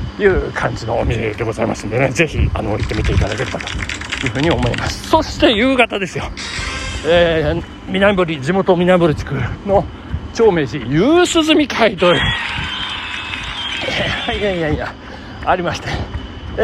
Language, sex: Japanese, male